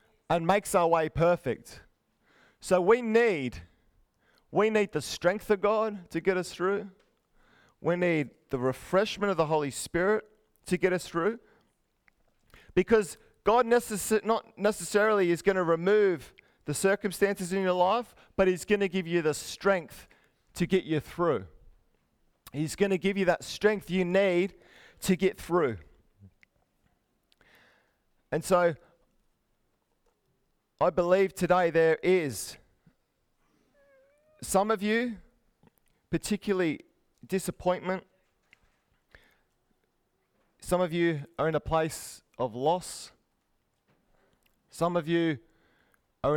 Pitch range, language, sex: 155-195 Hz, English, male